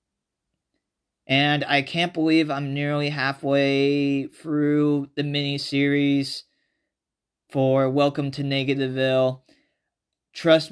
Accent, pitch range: American, 120-145 Hz